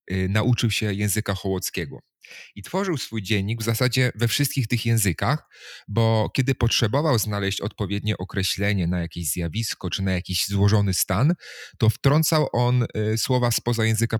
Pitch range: 100-130 Hz